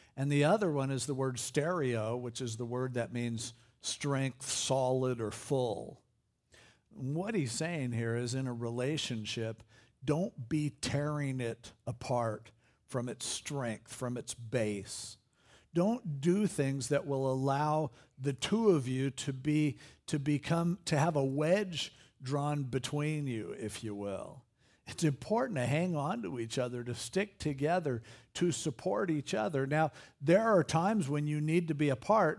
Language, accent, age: English, American, 50-69